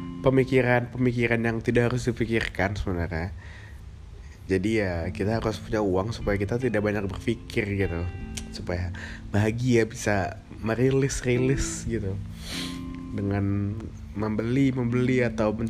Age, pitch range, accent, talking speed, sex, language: 20-39, 90-115 Hz, native, 100 wpm, male, Indonesian